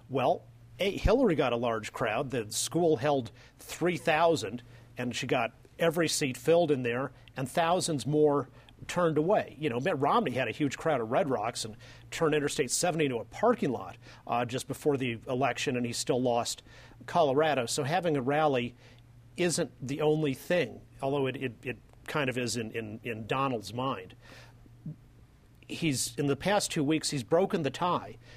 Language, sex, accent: English, male, American